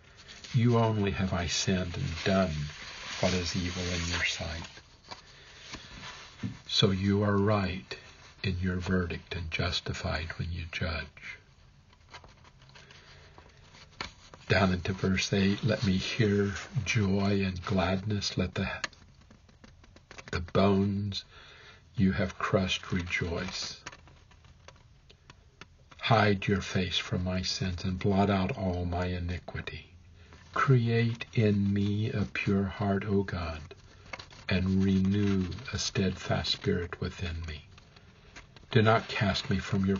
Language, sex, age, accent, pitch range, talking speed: English, male, 60-79, American, 90-100 Hz, 115 wpm